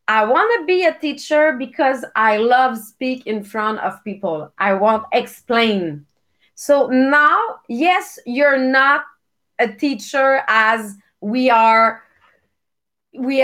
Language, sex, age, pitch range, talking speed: English, female, 30-49, 225-270 Hz, 125 wpm